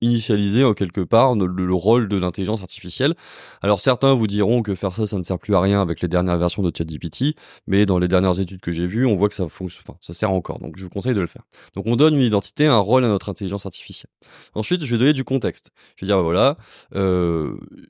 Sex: male